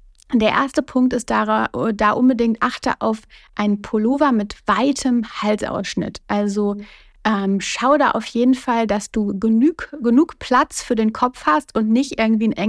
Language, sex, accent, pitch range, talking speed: German, female, German, 200-240 Hz, 160 wpm